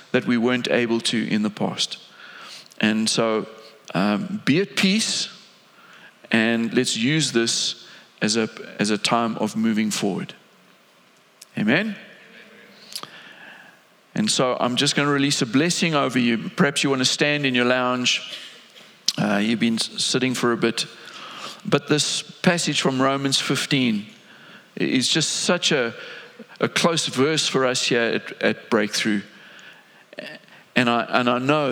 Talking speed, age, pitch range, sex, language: 145 wpm, 50-69, 115-160 Hz, male, English